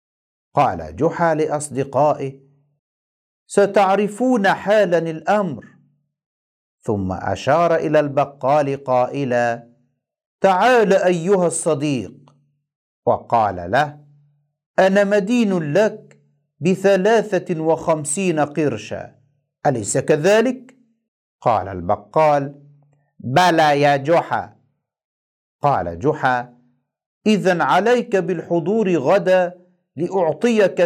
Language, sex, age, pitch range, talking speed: Arabic, male, 50-69, 145-200 Hz, 70 wpm